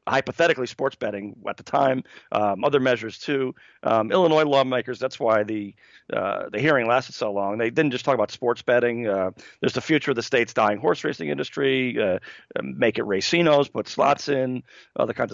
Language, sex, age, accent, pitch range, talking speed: English, male, 40-59, American, 110-135 Hz, 190 wpm